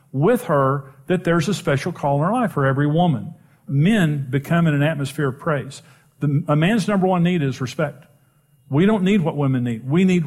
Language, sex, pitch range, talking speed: English, male, 140-175 Hz, 205 wpm